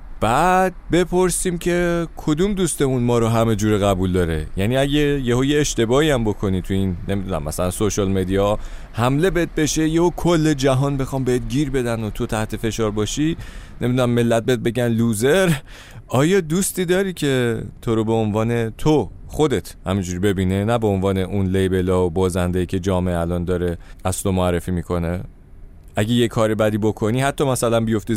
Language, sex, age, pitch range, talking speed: Persian, male, 30-49, 95-140 Hz, 170 wpm